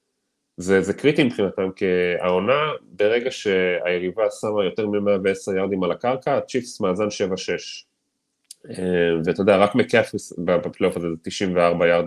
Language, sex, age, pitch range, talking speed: Hebrew, male, 20-39, 90-120 Hz, 130 wpm